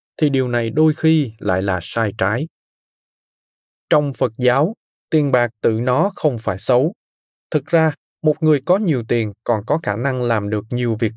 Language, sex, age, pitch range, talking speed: Vietnamese, male, 20-39, 115-160 Hz, 185 wpm